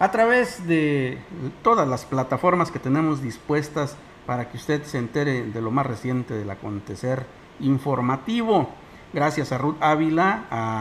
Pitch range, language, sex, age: 125-170 Hz, Spanish, male, 50-69